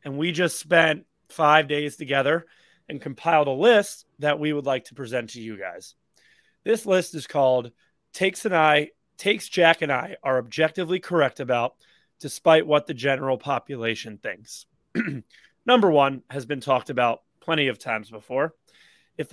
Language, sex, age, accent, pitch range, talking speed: English, male, 30-49, American, 125-160 Hz, 160 wpm